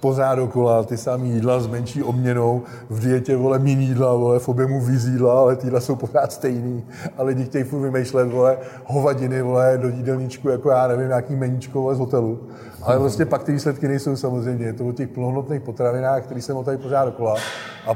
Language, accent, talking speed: Czech, native, 195 wpm